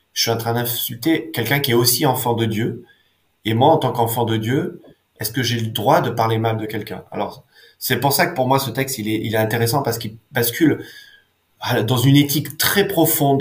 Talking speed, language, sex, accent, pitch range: 235 wpm, French, male, French, 115-145 Hz